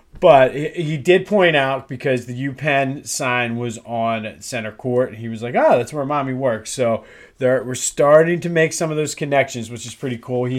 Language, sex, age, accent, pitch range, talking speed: English, male, 30-49, American, 110-145 Hz, 215 wpm